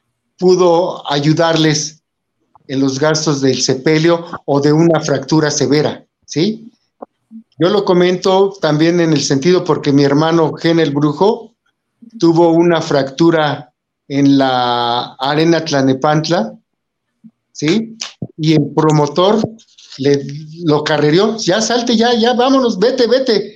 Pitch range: 145-180 Hz